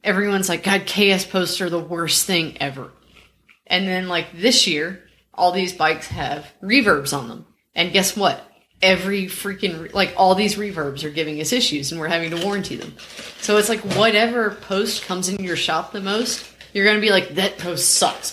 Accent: American